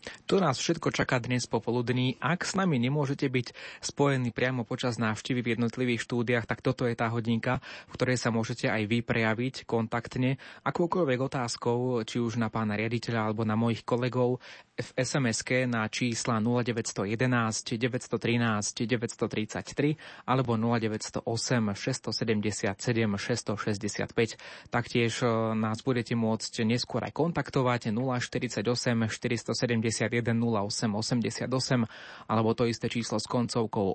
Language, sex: Slovak, male